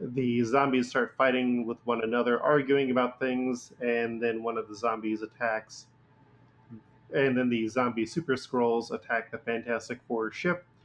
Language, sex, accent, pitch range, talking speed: English, male, American, 115-130 Hz, 155 wpm